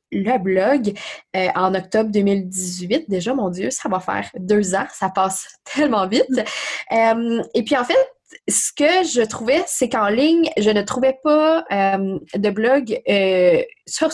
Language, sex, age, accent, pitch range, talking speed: French, female, 20-39, Canadian, 195-265 Hz, 160 wpm